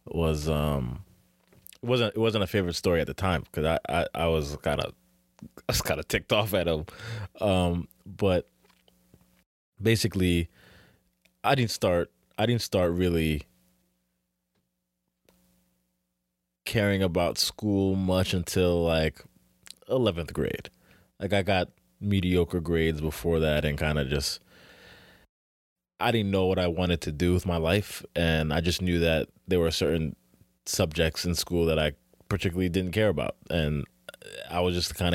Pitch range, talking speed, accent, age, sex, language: 75-95 Hz, 155 wpm, American, 20-39, male, English